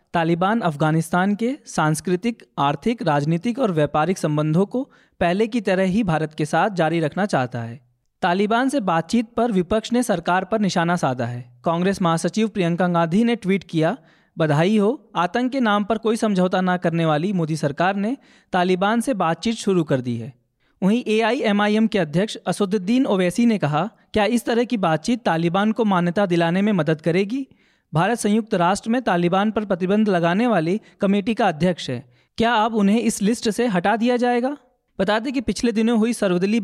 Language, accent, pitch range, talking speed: Hindi, native, 170-225 Hz, 180 wpm